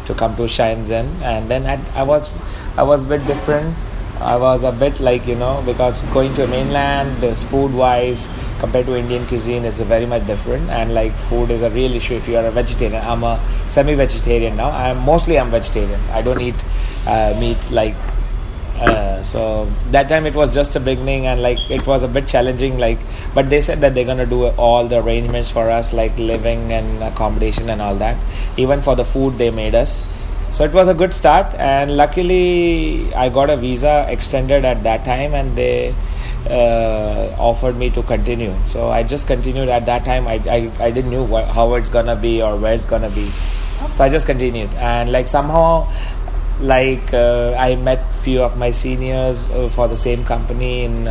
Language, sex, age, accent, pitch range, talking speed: English, male, 20-39, Indian, 115-130 Hz, 195 wpm